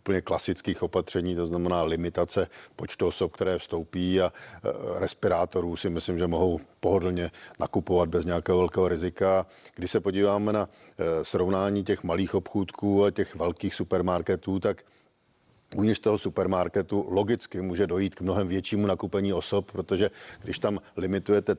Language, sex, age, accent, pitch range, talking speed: Czech, male, 50-69, native, 90-100 Hz, 135 wpm